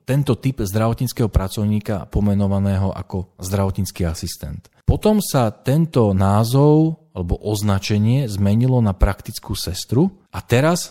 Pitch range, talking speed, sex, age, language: 95-115 Hz, 110 wpm, male, 40-59, Slovak